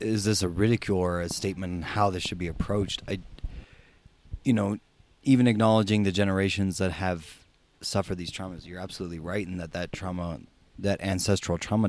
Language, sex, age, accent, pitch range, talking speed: English, male, 30-49, American, 85-105 Hz, 170 wpm